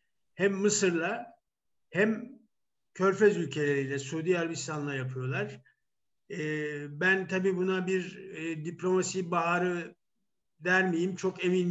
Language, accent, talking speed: Turkish, native, 100 wpm